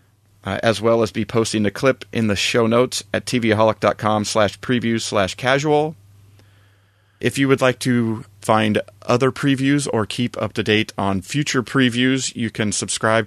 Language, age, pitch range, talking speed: English, 30-49, 100-120 Hz, 165 wpm